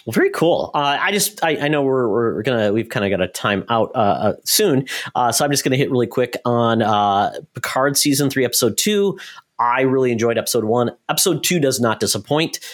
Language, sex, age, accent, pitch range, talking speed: English, male, 30-49, American, 105-140 Hz, 230 wpm